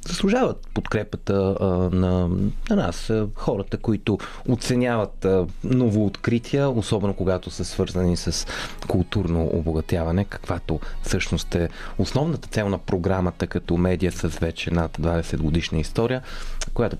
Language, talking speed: Bulgarian, 110 wpm